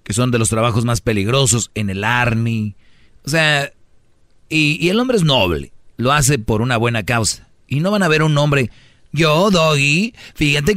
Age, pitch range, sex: 40-59, 115-140 Hz, male